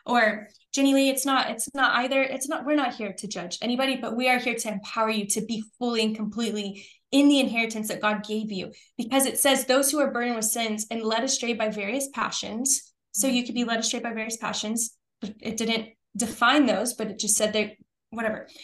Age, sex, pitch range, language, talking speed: 10-29, female, 220-270 Hz, English, 225 wpm